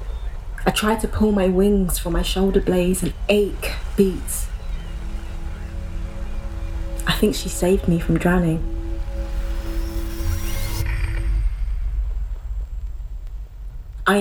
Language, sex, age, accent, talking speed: English, female, 30-49, British, 90 wpm